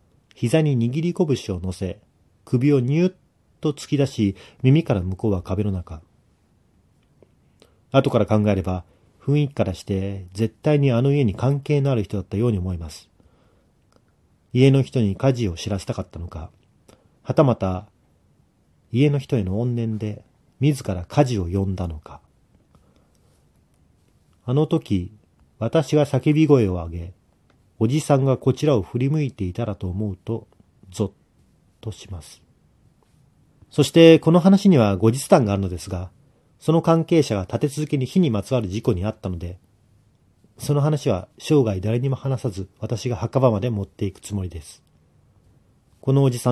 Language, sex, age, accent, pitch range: Japanese, male, 40-59, native, 95-135 Hz